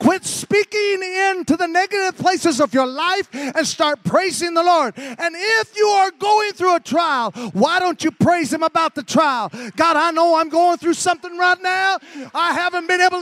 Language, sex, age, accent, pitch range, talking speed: English, male, 30-49, American, 305-370 Hz, 195 wpm